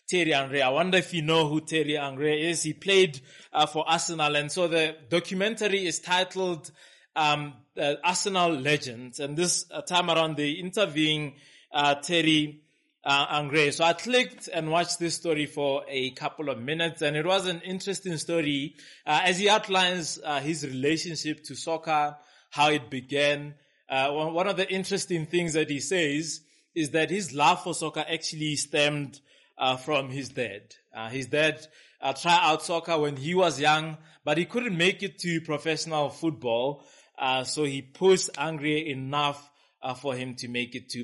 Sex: male